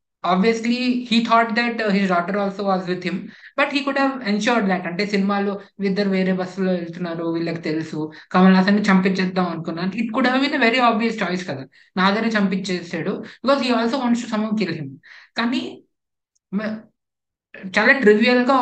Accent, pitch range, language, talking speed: native, 185-230 Hz, Telugu, 150 wpm